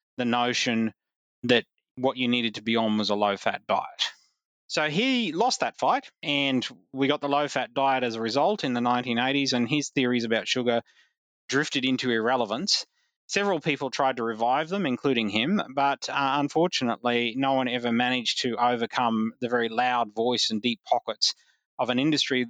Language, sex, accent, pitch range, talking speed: English, male, Australian, 110-135 Hz, 175 wpm